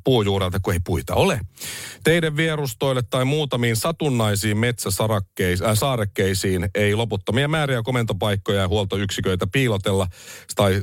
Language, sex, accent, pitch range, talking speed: Finnish, male, native, 95-125 Hz, 110 wpm